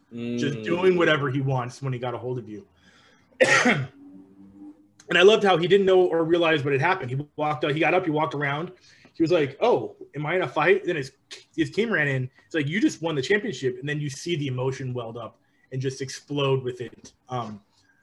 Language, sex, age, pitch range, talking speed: English, male, 20-39, 130-165 Hz, 235 wpm